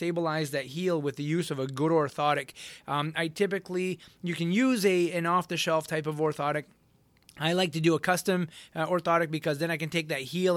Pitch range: 145-165 Hz